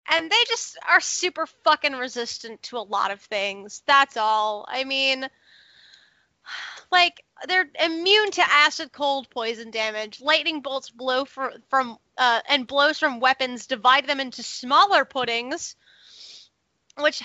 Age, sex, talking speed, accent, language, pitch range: 20-39, female, 140 wpm, American, English, 230-290 Hz